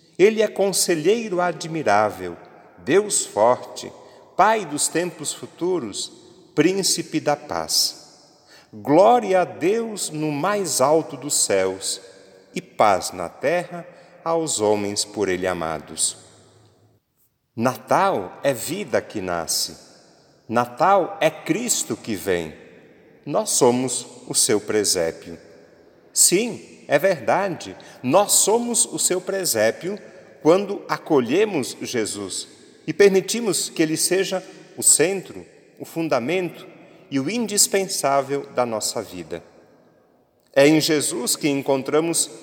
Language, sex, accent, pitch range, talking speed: Portuguese, male, Brazilian, 120-185 Hz, 105 wpm